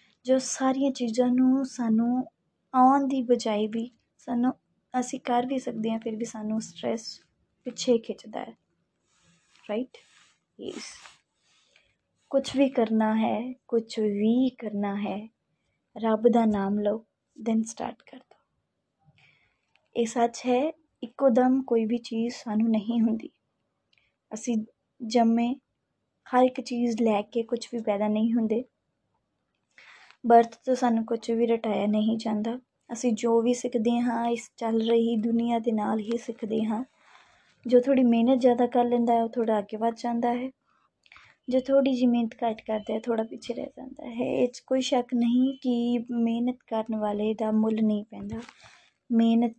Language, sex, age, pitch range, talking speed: Punjabi, female, 20-39, 220-245 Hz, 135 wpm